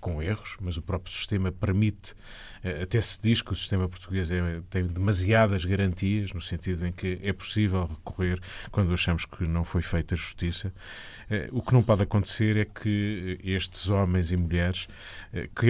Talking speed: 170 wpm